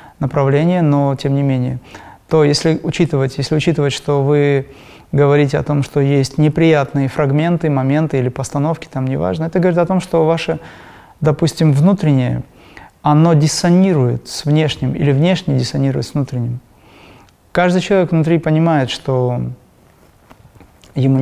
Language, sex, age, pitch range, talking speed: Russian, male, 30-49, 135-160 Hz, 135 wpm